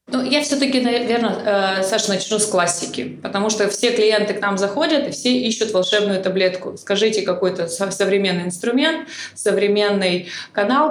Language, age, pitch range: Russian, 20-39, 190-220 Hz